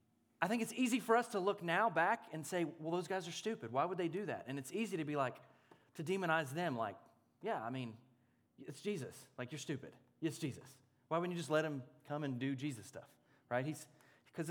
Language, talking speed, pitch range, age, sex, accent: English, 230 wpm, 135-185 Hz, 30-49, male, American